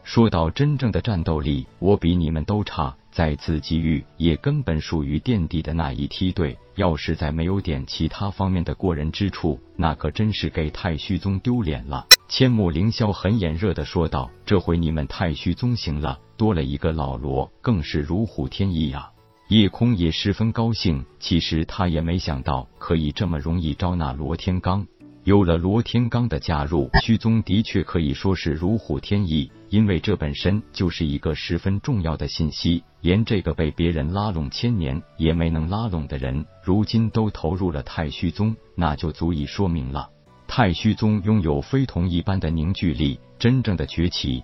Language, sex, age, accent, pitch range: Chinese, male, 50-69, native, 75-105 Hz